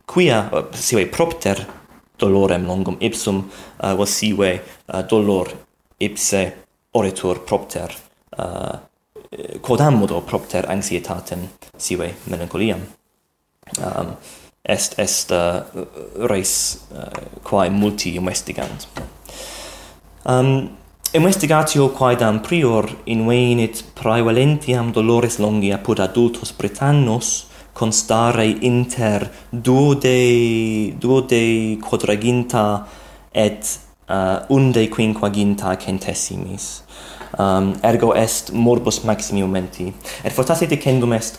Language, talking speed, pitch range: English, 90 wpm, 95-125 Hz